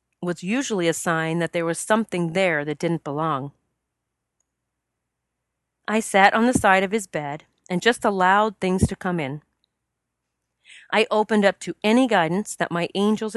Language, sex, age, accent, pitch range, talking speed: English, female, 40-59, American, 165-230 Hz, 160 wpm